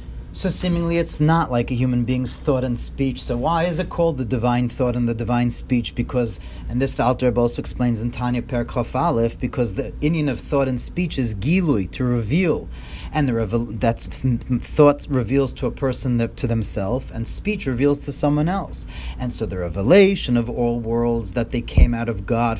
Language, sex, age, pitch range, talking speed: English, male, 40-59, 120-165 Hz, 200 wpm